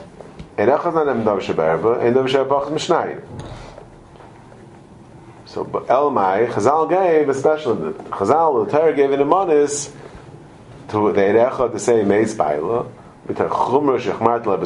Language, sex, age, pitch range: English, male, 30-49, 110-145 Hz